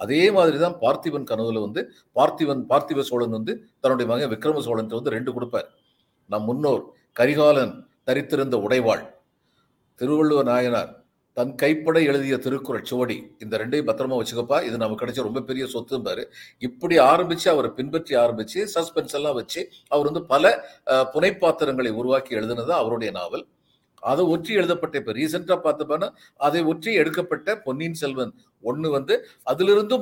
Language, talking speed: Tamil, 140 wpm